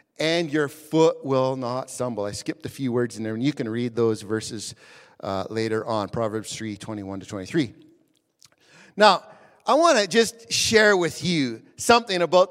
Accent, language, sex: American, English, male